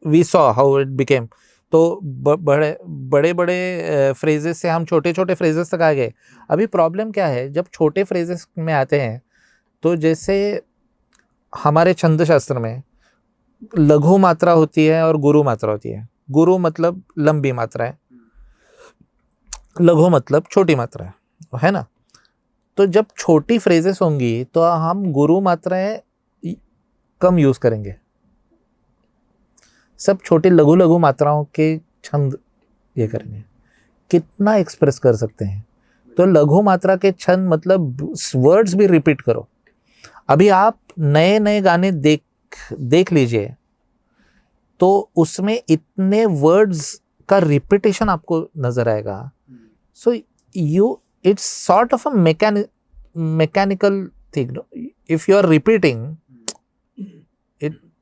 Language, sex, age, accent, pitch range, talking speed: Hindi, male, 30-49, native, 145-190 Hz, 125 wpm